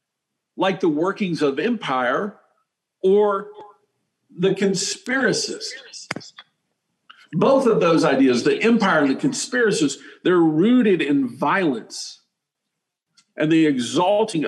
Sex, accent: male, American